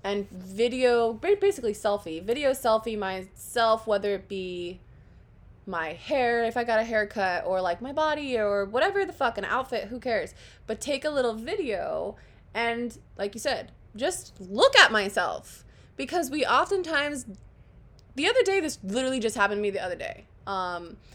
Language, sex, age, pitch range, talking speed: English, female, 20-39, 185-240 Hz, 165 wpm